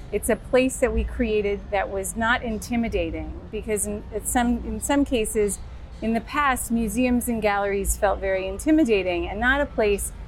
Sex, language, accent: female, English, American